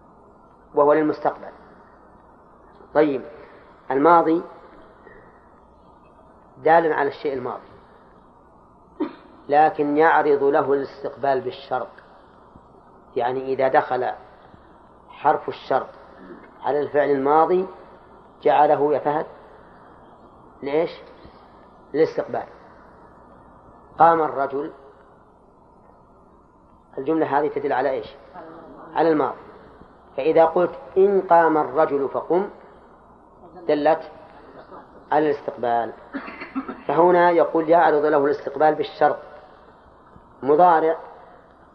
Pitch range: 145-170 Hz